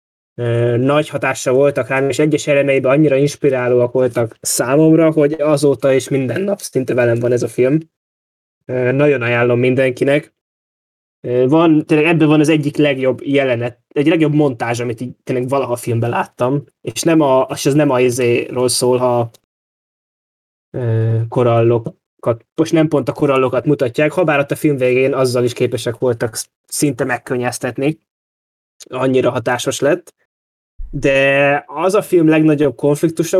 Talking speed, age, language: 135 wpm, 20-39, Hungarian